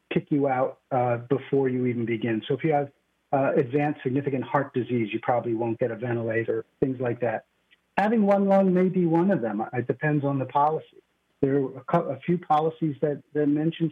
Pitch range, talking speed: 125-155 Hz, 205 wpm